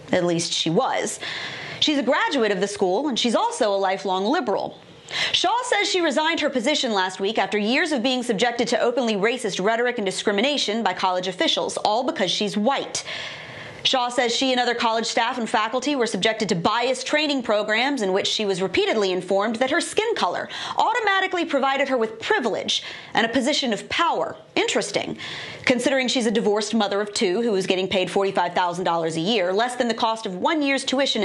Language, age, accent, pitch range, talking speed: English, 30-49, American, 205-290 Hz, 190 wpm